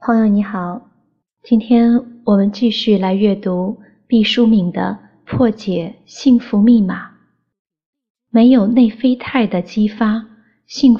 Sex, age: female, 30-49